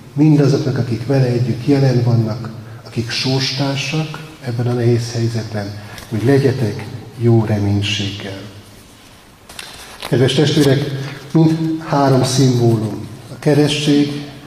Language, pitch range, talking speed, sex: Hungarian, 120-140 Hz, 95 wpm, male